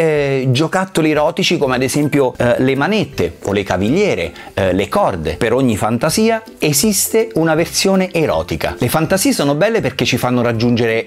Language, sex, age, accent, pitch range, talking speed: Italian, male, 30-49, native, 120-185 Hz, 165 wpm